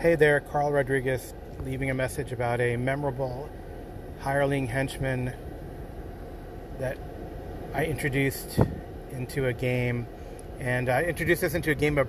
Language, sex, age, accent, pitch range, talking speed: English, male, 30-49, American, 120-140 Hz, 130 wpm